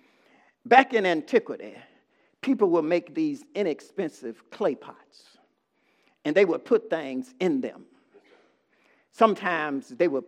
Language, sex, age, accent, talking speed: English, male, 50-69, American, 115 wpm